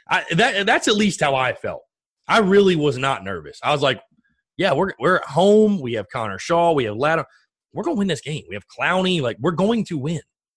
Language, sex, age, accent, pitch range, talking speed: English, male, 30-49, American, 110-155 Hz, 240 wpm